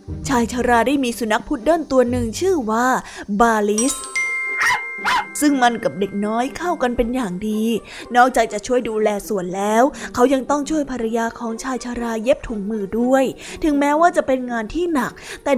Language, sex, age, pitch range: Thai, female, 20-39, 220-275 Hz